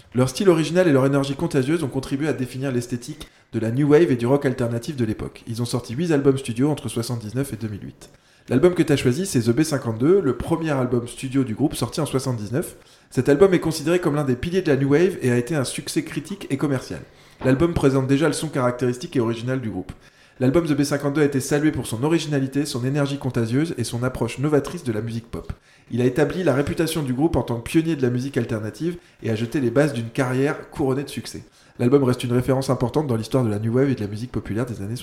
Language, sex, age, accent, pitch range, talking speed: French, male, 20-39, French, 125-150 Hz, 240 wpm